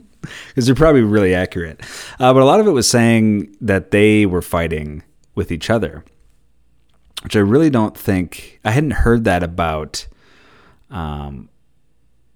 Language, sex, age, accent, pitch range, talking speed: English, male, 30-49, American, 80-100 Hz, 150 wpm